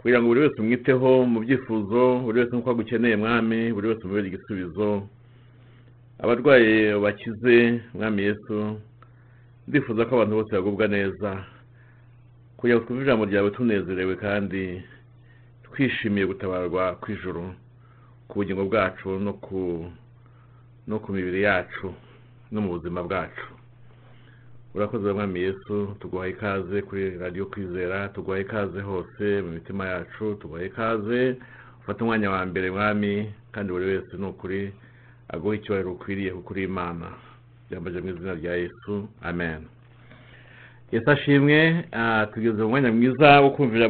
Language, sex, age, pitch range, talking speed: English, male, 50-69, 100-120 Hz, 105 wpm